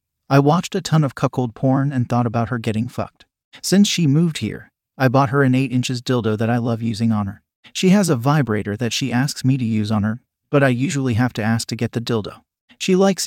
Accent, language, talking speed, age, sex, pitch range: American, English, 245 wpm, 40-59, male, 115-145 Hz